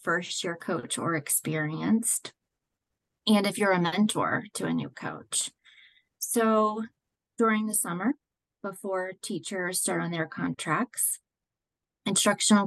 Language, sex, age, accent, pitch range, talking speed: English, female, 30-49, American, 170-215 Hz, 115 wpm